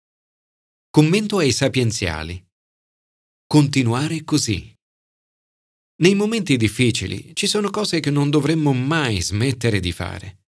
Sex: male